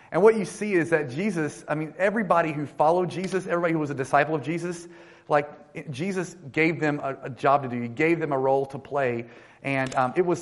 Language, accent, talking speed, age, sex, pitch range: English, American, 230 wpm, 30-49, male, 140-170 Hz